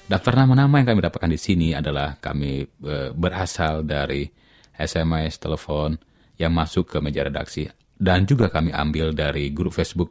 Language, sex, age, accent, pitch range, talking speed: Indonesian, male, 30-49, native, 75-85 Hz, 150 wpm